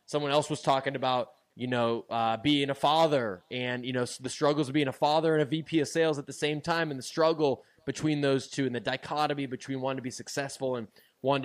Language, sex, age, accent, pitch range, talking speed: English, male, 20-39, American, 125-155 Hz, 235 wpm